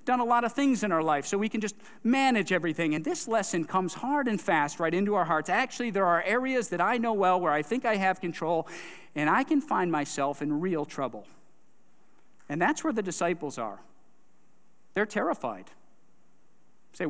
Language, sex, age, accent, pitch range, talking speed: English, male, 50-69, American, 155-210 Hz, 195 wpm